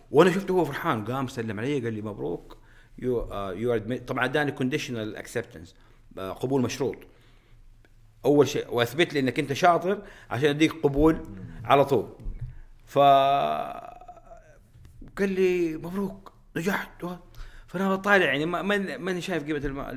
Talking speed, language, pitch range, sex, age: 125 wpm, Arabic, 110-150 Hz, male, 50-69